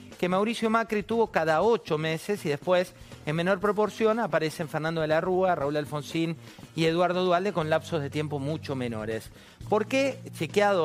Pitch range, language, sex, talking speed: 140-185 Hz, Spanish, male, 170 wpm